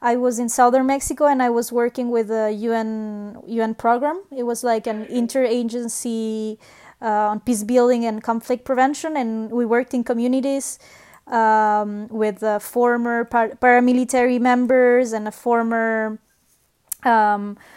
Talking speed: 140 wpm